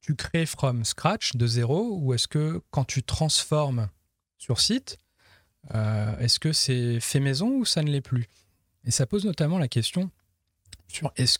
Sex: male